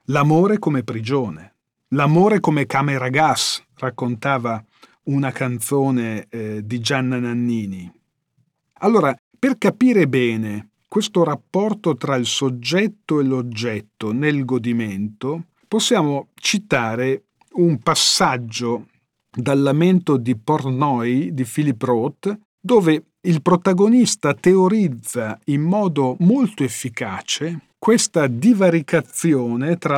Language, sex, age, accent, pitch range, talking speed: Italian, male, 40-59, native, 125-175 Hz, 100 wpm